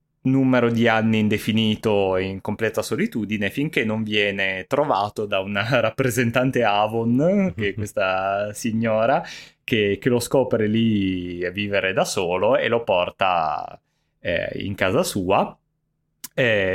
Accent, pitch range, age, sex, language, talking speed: native, 100-115 Hz, 20-39, male, Italian, 130 wpm